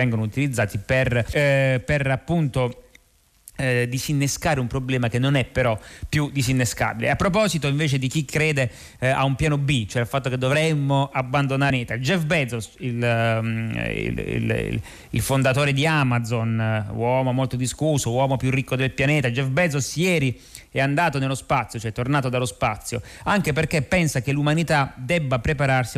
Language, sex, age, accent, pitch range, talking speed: Italian, male, 30-49, native, 120-140 Hz, 160 wpm